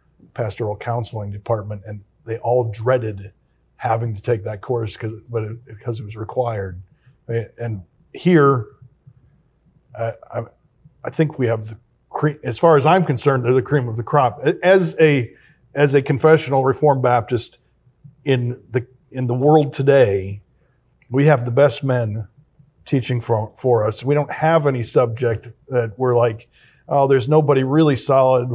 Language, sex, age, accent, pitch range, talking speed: English, male, 40-59, American, 120-145 Hz, 155 wpm